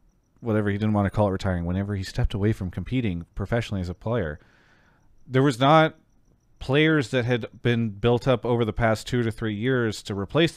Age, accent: 30-49, American